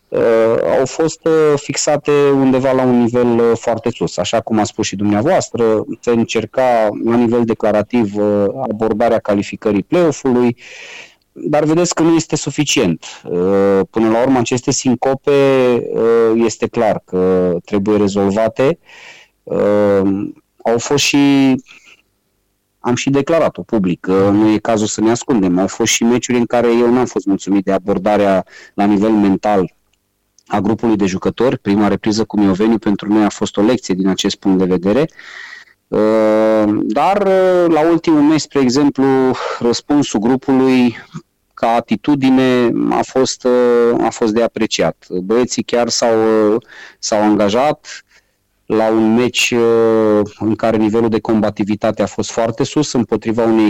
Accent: native